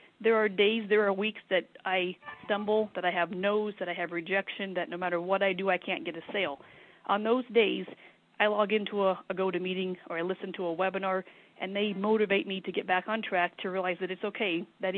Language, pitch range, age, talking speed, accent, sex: English, 175-205 Hz, 40-59, 235 wpm, American, female